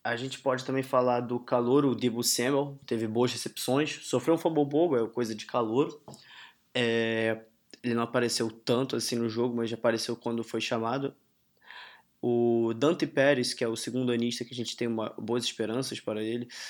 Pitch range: 115-130 Hz